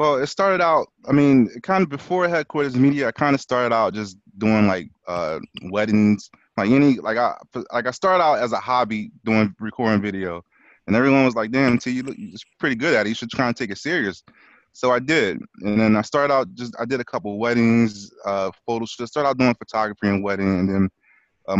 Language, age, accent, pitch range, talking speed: English, 20-39, American, 95-120 Hz, 230 wpm